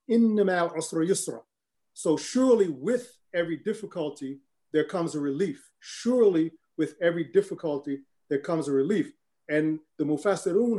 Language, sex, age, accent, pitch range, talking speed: English, male, 40-59, American, 155-190 Hz, 110 wpm